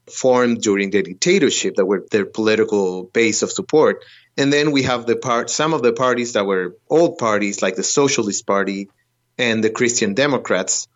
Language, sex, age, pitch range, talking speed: English, male, 30-49, 110-135 Hz, 180 wpm